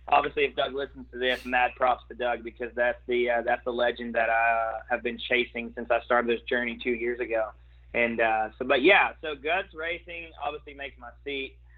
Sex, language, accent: male, English, American